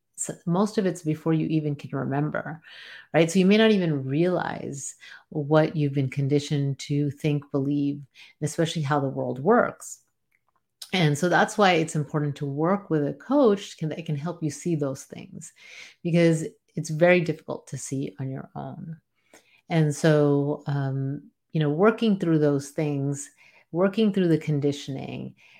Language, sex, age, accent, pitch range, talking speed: English, female, 30-49, American, 145-180 Hz, 155 wpm